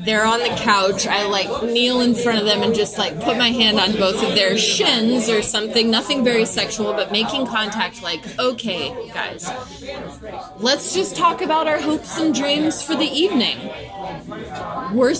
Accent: American